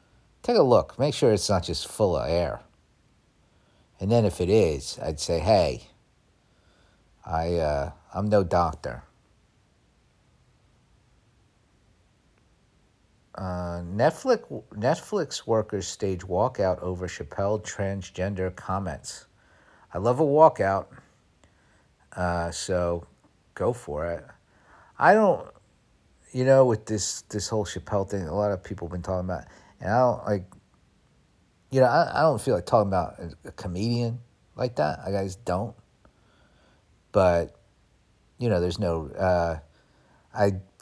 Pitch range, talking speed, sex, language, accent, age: 90-105 Hz, 130 wpm, male, English, American, 50-69